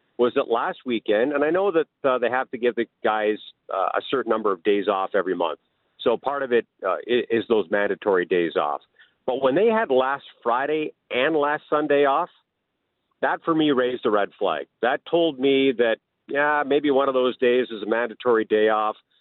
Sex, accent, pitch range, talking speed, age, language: male, American, 120-145 Hz, 210 wpm, 50-69, English